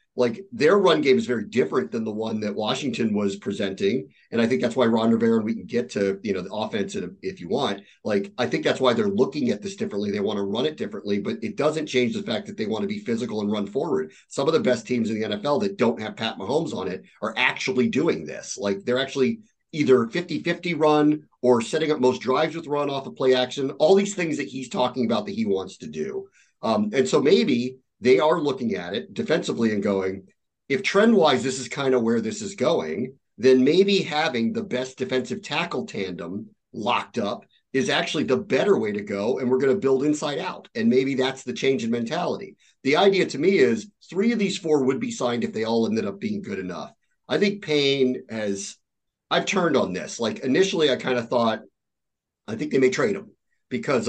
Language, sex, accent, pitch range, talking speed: English, male, American, 115-190 Hz, 230 wpm